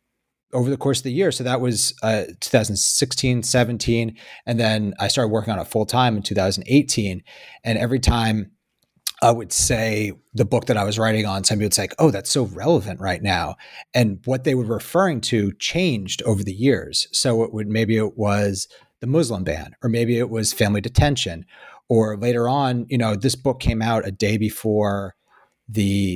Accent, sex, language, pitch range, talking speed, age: American, male, English, 100-120 Hz, 190 wpm, 30-49